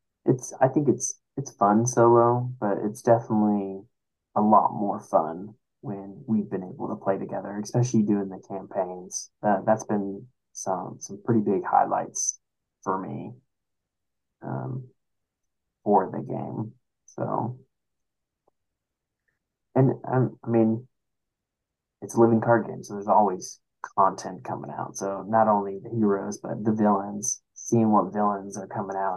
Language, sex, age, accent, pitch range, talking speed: English, male, 20-39, American, 95-115 Hz, 140 wpm